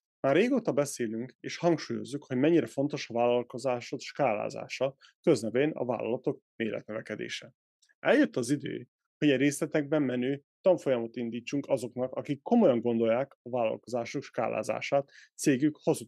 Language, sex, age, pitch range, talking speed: Hungarian, male, 30-49, 125-155 Hz, 125 wpm